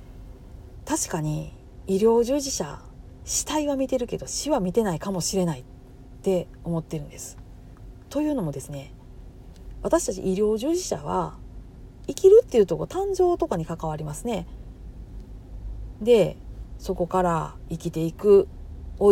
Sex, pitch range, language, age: female, 155-260 Hz, Japanese, 40-59